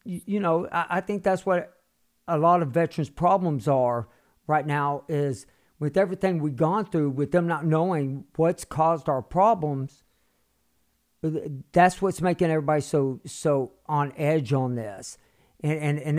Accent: American